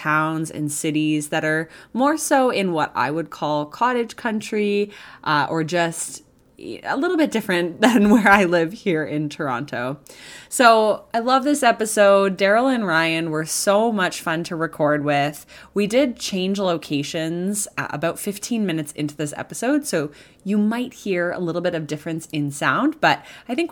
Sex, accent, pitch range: female, American, 155-215 Hz